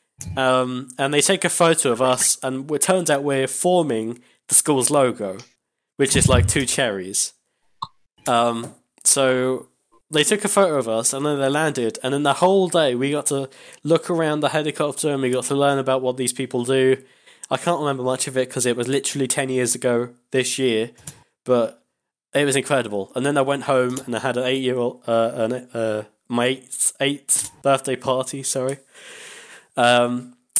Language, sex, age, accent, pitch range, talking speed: English, male, 10-29, British, 120-140 Hz, 190 wpm